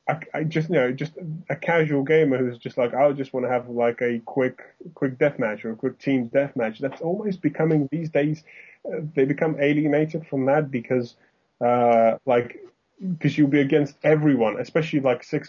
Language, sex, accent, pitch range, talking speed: English, male, British, 125-150 Hz, 190 wpm